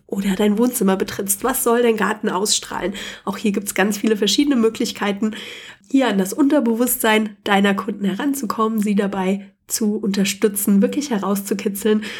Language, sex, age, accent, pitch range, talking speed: German, female, 30-49, German, 195-225 Hz, 150 wpm